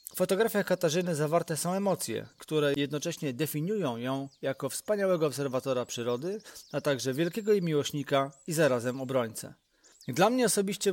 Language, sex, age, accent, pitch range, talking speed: Polish, male, 30-49, native, 130-170 Hz, 135 wpm